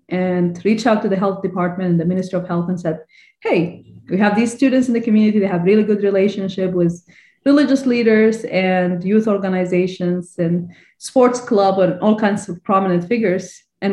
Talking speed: 185 wpm